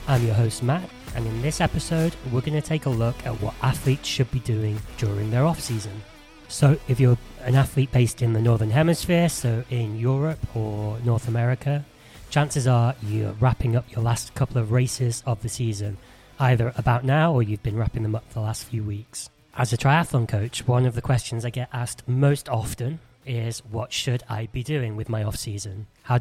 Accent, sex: British, male